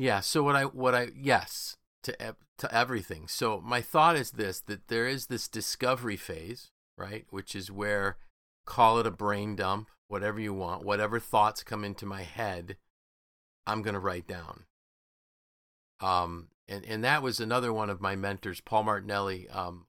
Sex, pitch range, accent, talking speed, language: male, 95-110 Hz, American, 170 wpm, English